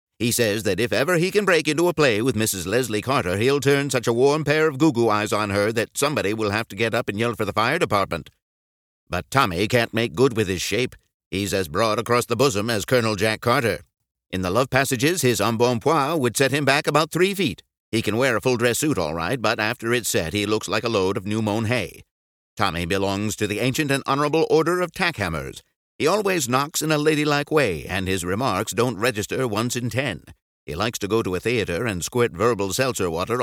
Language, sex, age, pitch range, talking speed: English, male, 60-79, 105-140 Hz, 230 wpm